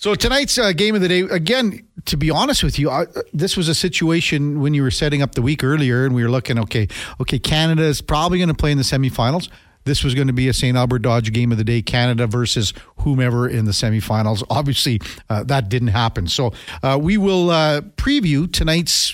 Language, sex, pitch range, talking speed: English, male, 120-165 Hz, 225 wpm